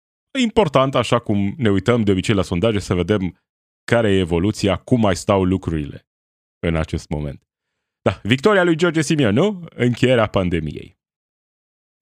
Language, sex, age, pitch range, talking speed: Romanian, male, 30-49, 95-125 Hz, 145 wpm